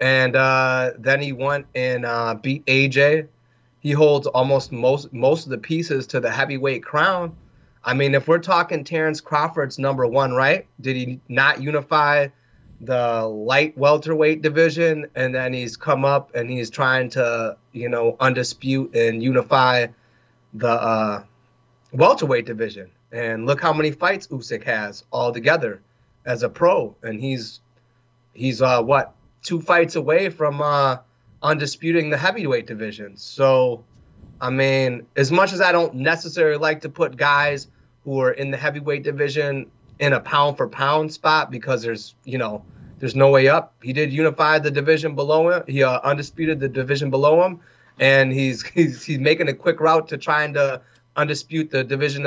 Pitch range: 125-150 Hz